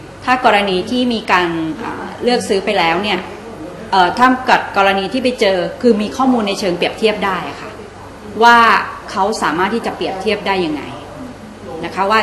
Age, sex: 30-49, female